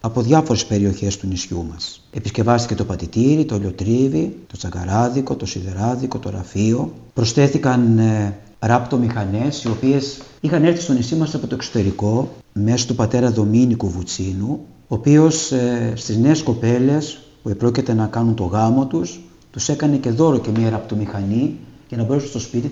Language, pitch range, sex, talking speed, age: Greek, 105-135 Hz, male, 155 wpm, 50-69